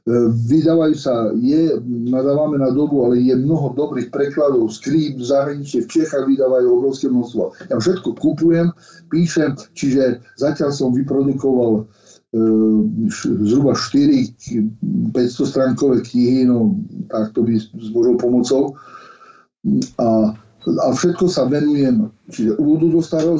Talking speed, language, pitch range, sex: 125 wpm, Slovak, 130-175 Hz, male